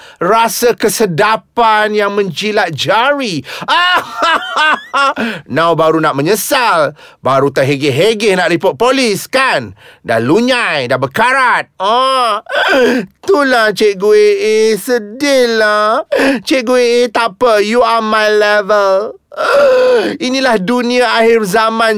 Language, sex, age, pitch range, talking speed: Malay, male, 30-49, 210-260 Hz, 115 wpm